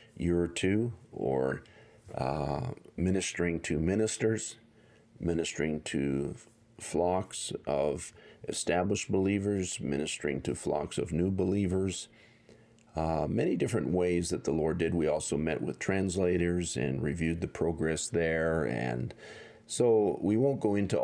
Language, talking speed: English, 125 wpm